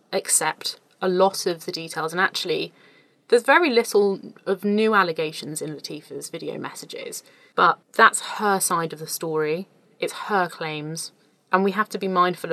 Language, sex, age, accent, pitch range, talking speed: English, female, 20-39, British, 170-215 Hz, 165 wpm